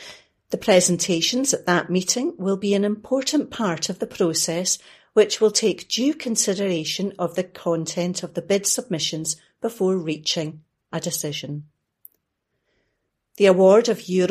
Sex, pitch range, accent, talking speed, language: female, 165-215 Hz, British, 140 wpm, English